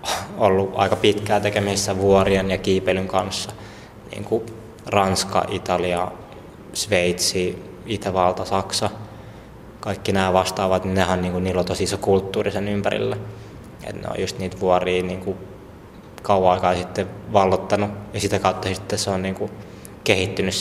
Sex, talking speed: male, 130 wpm